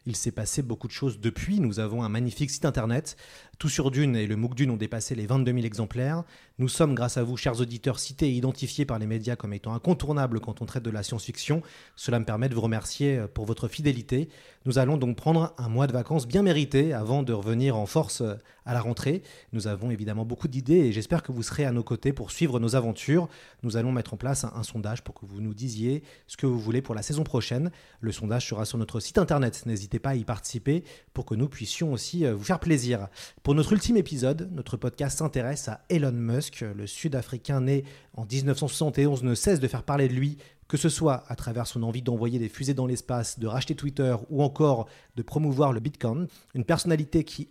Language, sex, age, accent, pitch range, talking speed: French, male, 30-49, French, 115-145 Hz, 225 wpm